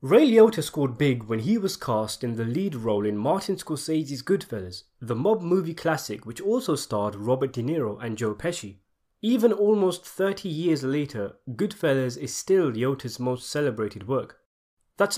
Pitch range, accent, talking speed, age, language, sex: 110-160 Hz, British, 165 wpm, 20-39, English, male